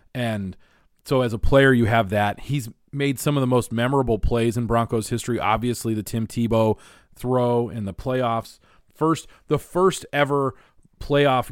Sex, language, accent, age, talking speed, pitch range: male, English, American, 30-49, 165 wpm, 110-140 Hz